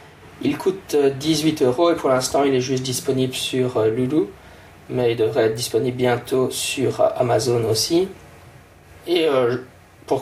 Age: 20-39